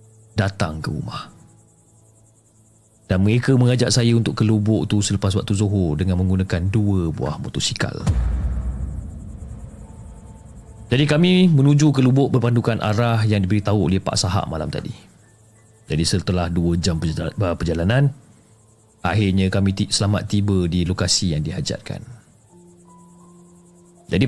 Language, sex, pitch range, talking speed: Malay, male, 95-115 Hz, 115 wpm